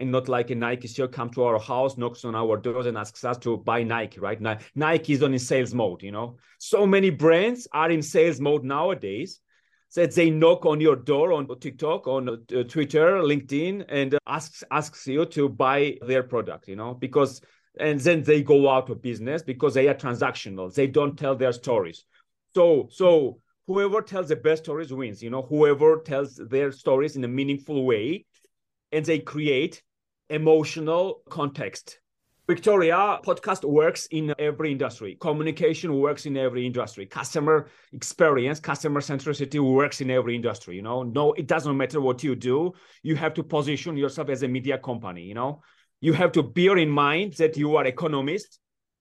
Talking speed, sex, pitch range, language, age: 180 wpm, male, 130-160 Hz, English, 30-49